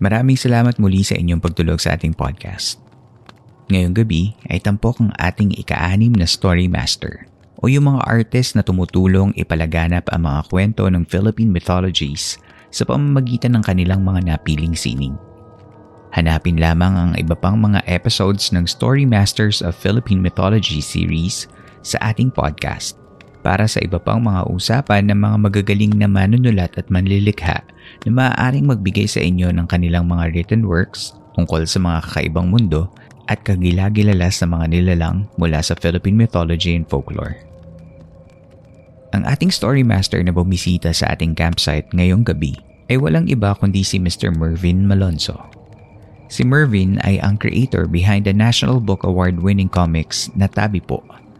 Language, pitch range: Filipino, 85-110 Hz